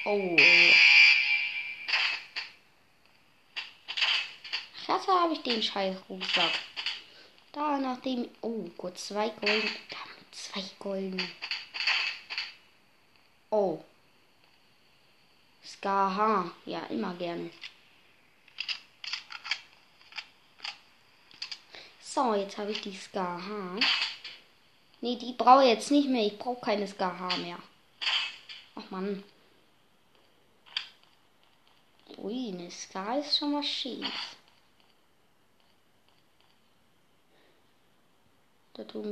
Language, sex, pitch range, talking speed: German, female, 190-245 Hz, 75 wpm